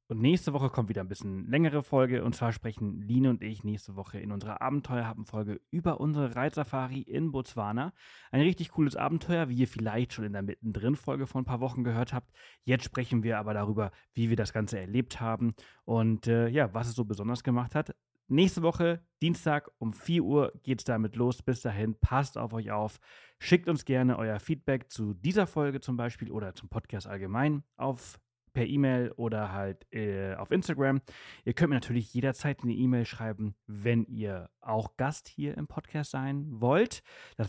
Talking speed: 185 wpm